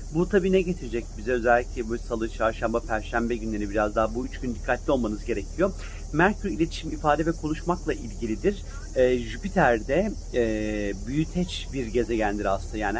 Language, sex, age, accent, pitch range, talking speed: Turkish, male, 40-59, native, 115-155 Hz, 155 wpm